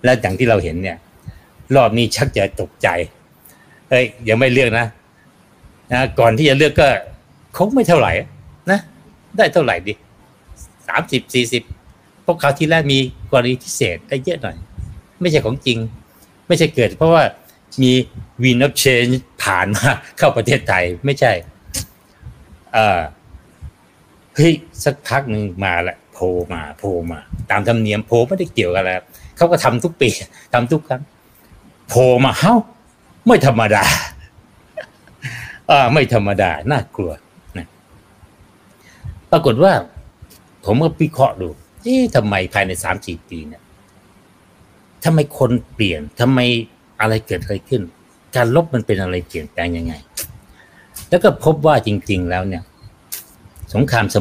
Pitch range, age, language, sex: 95-130 Hz, 60-79, Thai, male